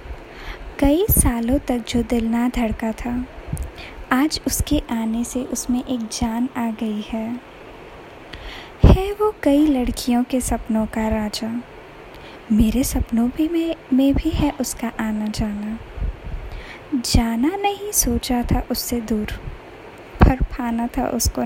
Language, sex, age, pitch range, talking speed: Hindi, female, 20-39, 230-260 Hz, 130 wpm